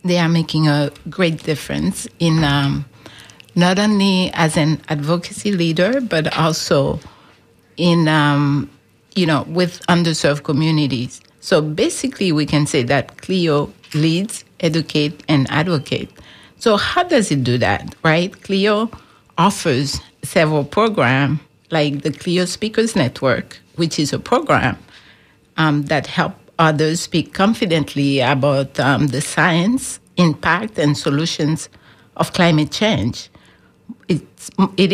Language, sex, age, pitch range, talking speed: English, female, 60-79, 145-180 Hz, 120 wpm